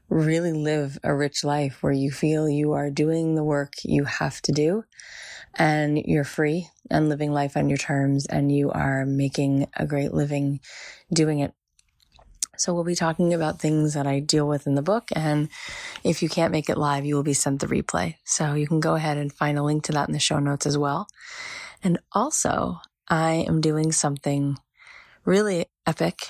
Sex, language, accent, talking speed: female, English, American, 195 wpm